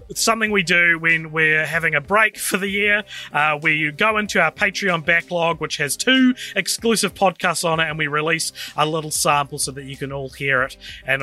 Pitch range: 145-200 Hz